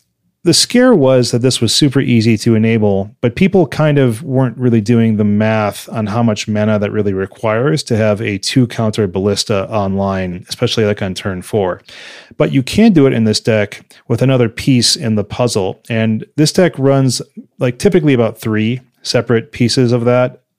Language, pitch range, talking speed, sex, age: English, 110-130 Hz, 185 wpm, male, 30-49